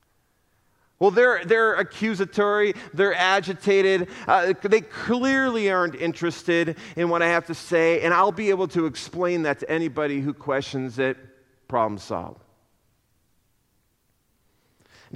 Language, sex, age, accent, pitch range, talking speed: English, male, 40-59, American, 140-205 Hz, 125 wpm